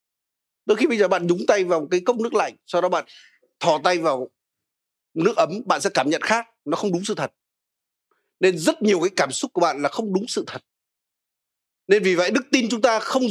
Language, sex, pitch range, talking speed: Vietnamese, male, 180-240 Hz, 230 wpm